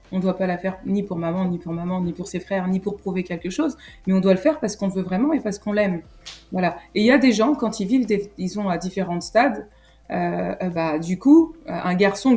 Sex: female